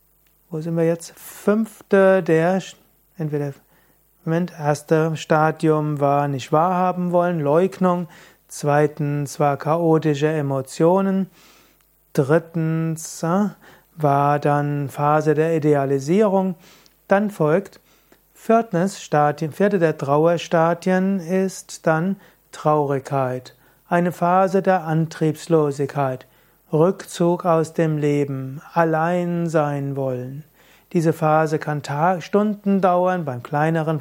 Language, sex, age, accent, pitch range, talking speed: German, male, 30-49, German, 150-180 Hz, 90 wpm